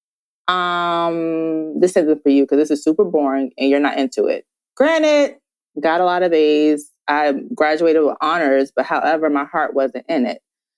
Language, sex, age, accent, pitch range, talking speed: English, female, 20-39, American, 140-170 Hz, 180 wpm